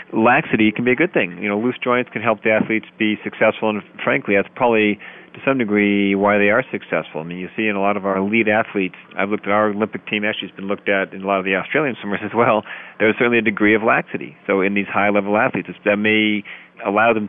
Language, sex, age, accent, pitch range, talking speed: English, male, 40-59, American, 100-115 Hz, 255 wpm